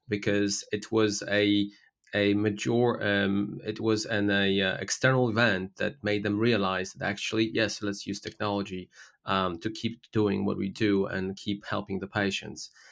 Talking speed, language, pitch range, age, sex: 165 wpm, English, 100-110 Hz, 20-39, male